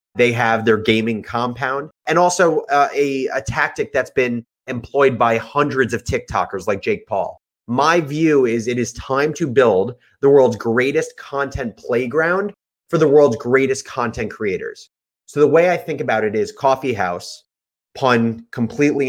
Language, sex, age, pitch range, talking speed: English, male, 30-49, 115-150 Hz, 165 wpm